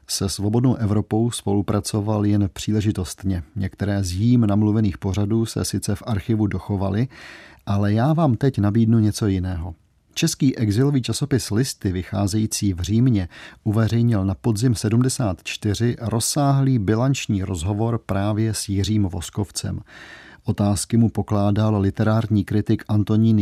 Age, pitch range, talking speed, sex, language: 40-59, 100-115 Hz, 120 wpm, male, Czech